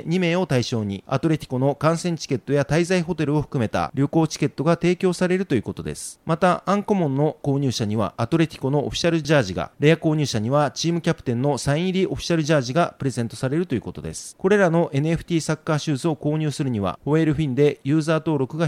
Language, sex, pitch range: Japanese, male, 125-165 Hz